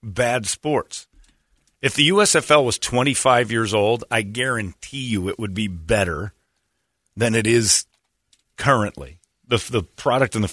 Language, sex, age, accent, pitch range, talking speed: English, male, 40-59, American, 100-150 Hz, 140 wpm